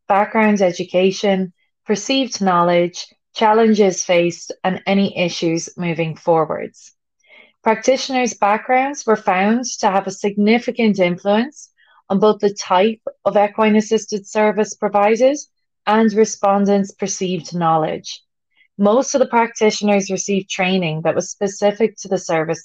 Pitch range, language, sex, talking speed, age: 180-220 Hz, English, female, 115 wpm, 20-39